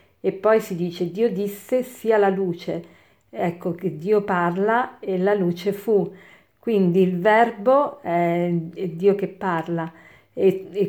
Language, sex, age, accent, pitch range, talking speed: Italian, female, 50-69, native, 180-210 Hz, 145 wpm